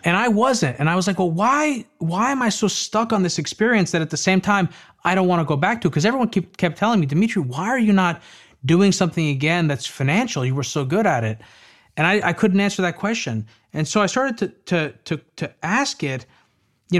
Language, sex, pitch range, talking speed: English, male, 140-190 Hz, 245 wpm